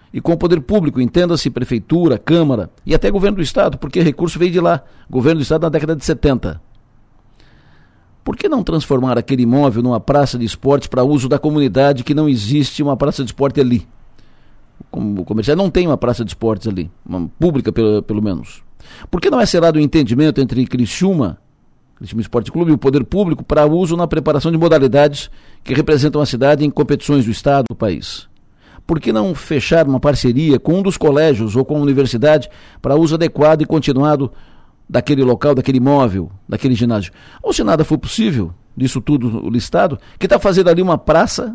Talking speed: 190 wpm